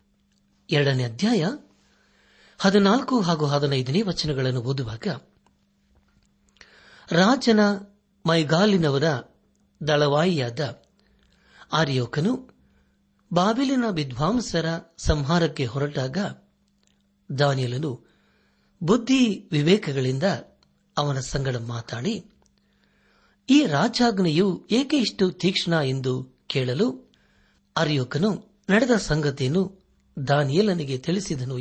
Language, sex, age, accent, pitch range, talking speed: Kannada, male, 60-79, native, 130-200 Hz, 55 wpm